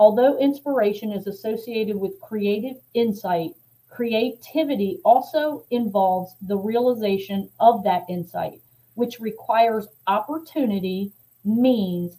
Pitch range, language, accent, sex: 195-235 Hz, English, American, female